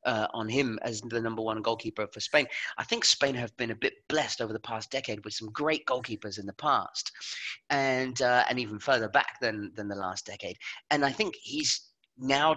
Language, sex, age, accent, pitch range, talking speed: English, male, 30-49, British, 115-180 Hz, 215 wpm